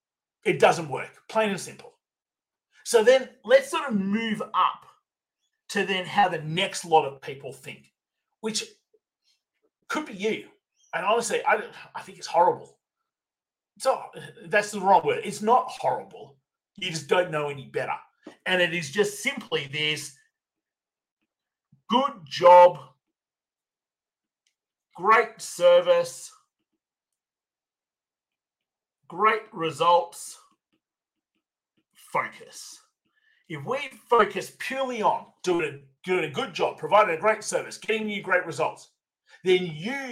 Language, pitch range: English, 170-265 Hz